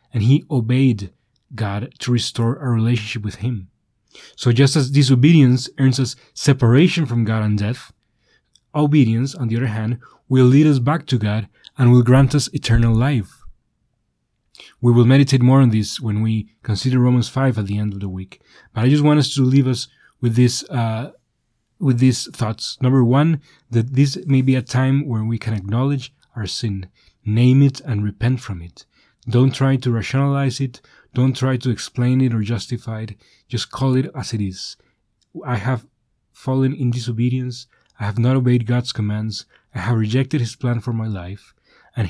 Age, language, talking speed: 30-49, English, 180 wpm